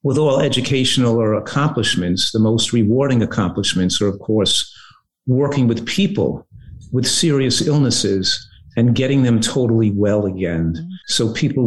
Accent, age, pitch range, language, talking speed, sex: American, 50-69, 105-130 Hz, English, 135 wpm, male